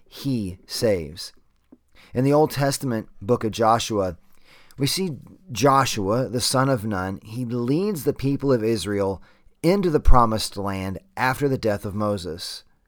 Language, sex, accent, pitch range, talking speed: English, male, American, 100-135 Hz, 145 wpm